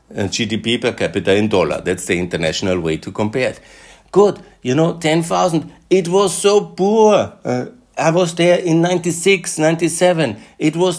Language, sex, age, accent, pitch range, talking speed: German, male, 60-79, German, 125-170 Hz, 160 wpm